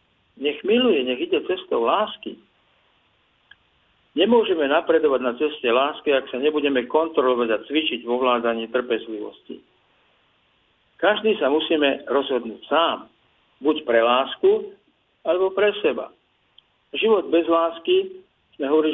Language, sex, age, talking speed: Slovak, male, 50-69, 110 wpm